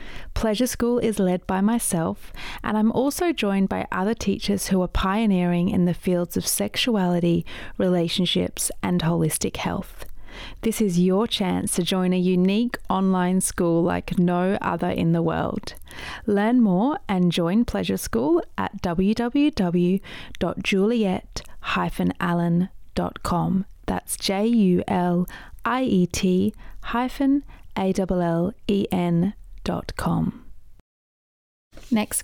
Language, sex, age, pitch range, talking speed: English, female, 30-49, 180-230 Hz, 110 wpm